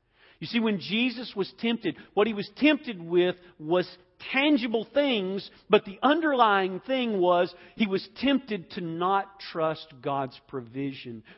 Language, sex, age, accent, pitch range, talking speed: English, male, 50-69, American, 120-170 Hz, 140 wpm